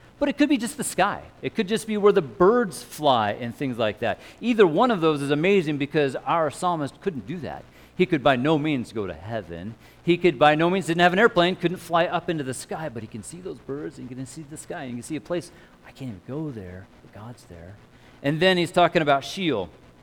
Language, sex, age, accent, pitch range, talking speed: English, male, 40-59, American, 105-170 Hz, 260 wpm